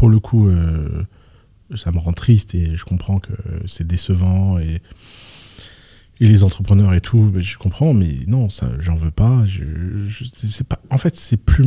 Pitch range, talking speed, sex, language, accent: 95-115 Hz, 185 wpm, male, French, French